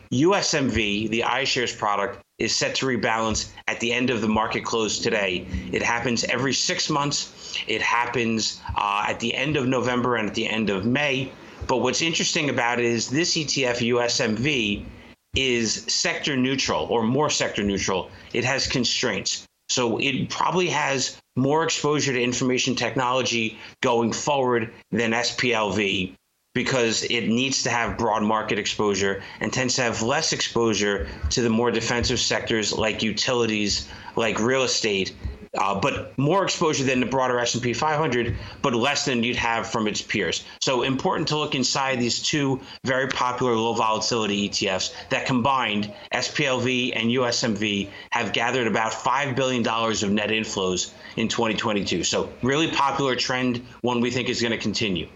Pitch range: 110-130 Hz